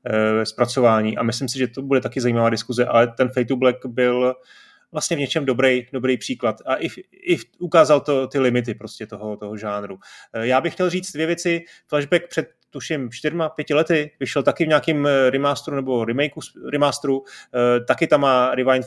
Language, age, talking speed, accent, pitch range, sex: Czech, 30-49, 170 wpm, native, 120-130 Hz, male